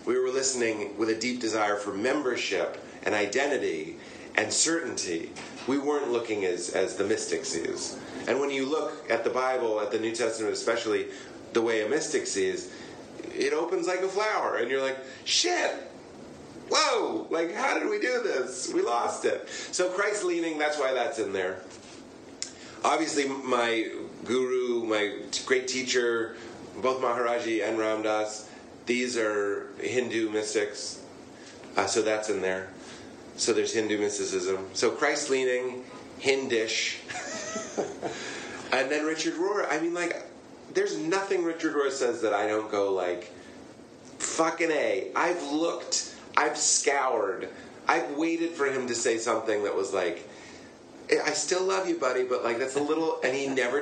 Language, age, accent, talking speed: English, 30-49, American, 150 wpm